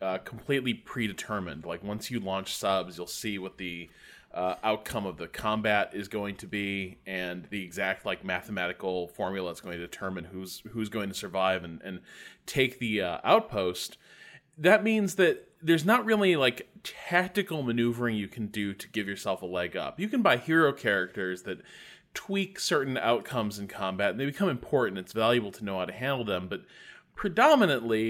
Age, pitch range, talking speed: 20-39, 95-120 Hz, 180 wpm